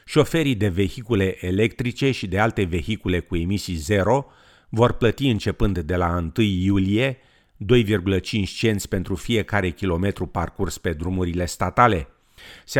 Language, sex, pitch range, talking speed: Romanian, male, 90-110 Hz, 130 wpm